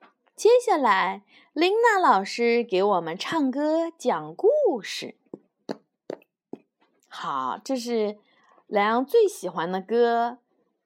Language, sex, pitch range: Chinese, female, 210-320 Hz